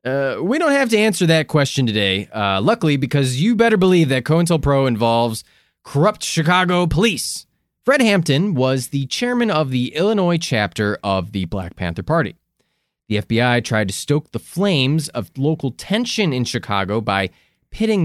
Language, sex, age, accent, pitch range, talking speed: English, male, 20-39, American, 110-160 Hz, 165 wpm